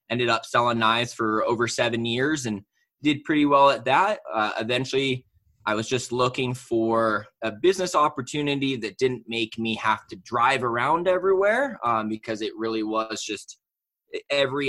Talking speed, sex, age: 165 wpm, male, 20-39